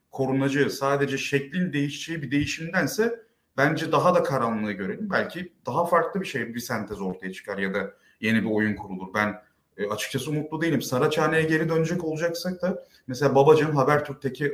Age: 30-49